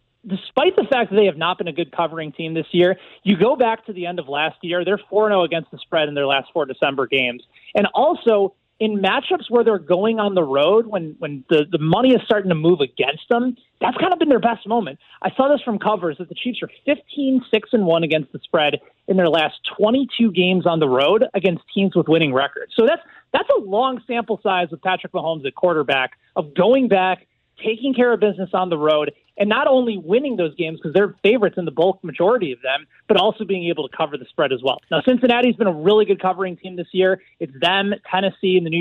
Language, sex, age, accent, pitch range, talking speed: English, male, 30-49, American, 165-220 Hz, 240 wpm